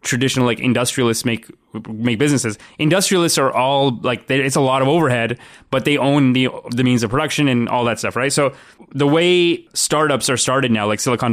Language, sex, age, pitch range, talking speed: English, male, 20-39, 120-145 Hz, 195 wpm